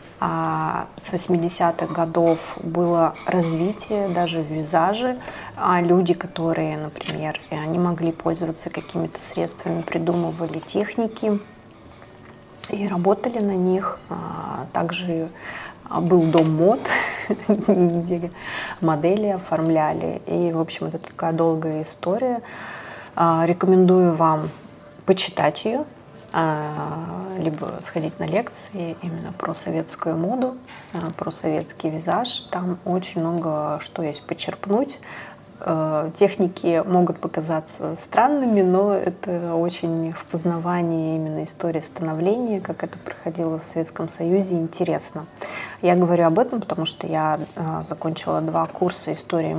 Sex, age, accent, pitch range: female, 30-49, native, 160-190 Hz